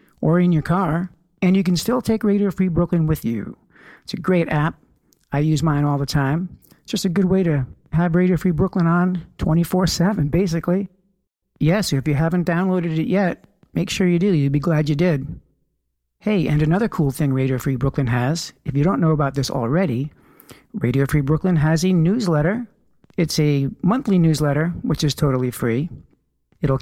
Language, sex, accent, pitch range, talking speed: English, male, American, 145-190 Hz, 190 wpm